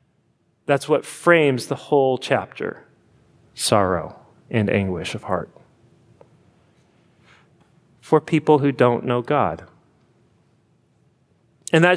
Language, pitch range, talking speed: English, 125-150 Hz, 95 wpm